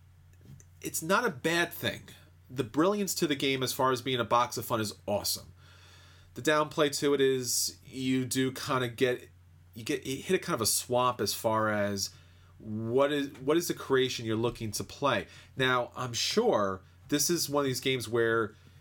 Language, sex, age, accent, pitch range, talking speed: English, male, 30-49, American, 105-130 Hz, 200 wpm